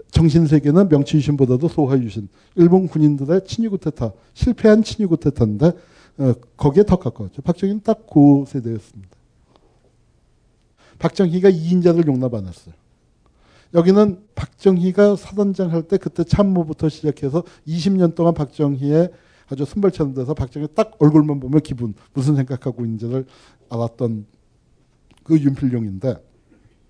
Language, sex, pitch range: Korean, male, 120-170 Hz